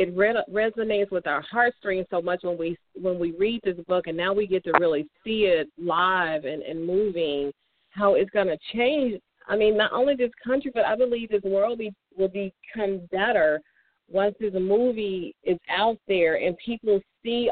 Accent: American